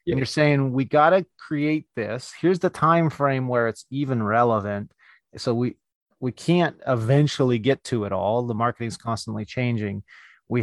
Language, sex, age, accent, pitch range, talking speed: English, male, 30-49, American, 115-145 Hz, 175 wpm